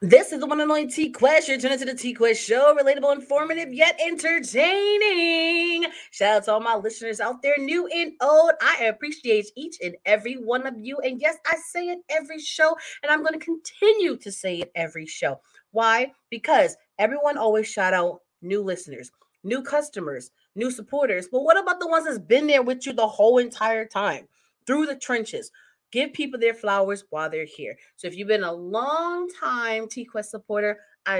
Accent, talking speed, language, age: American, 190 wpm, English, 30-49